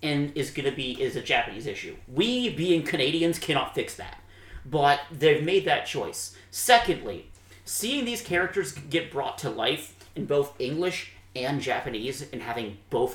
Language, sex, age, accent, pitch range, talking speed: English, male, 30-49, American, 115-170 Hz, 165 wpm